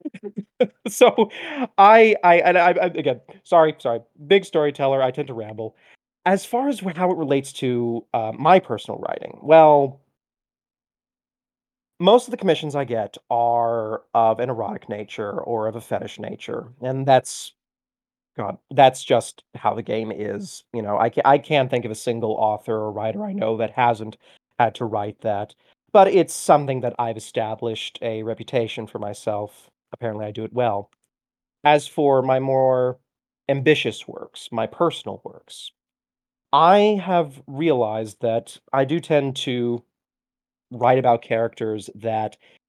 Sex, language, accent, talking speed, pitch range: male, English, American, 150 wpm, 115-145 Hz